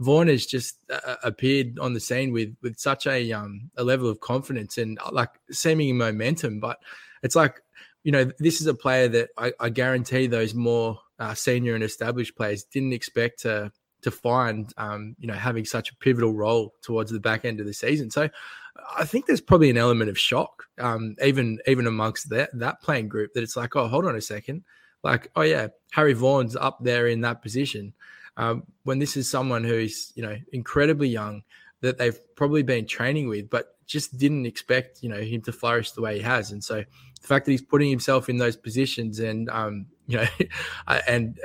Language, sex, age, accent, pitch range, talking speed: English, male, 20-39, Australian, 110-130 Hz, 205 wpm